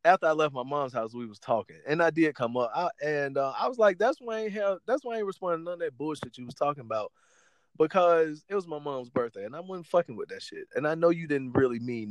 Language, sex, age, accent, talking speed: English, male, 20-39, American, 290 wpm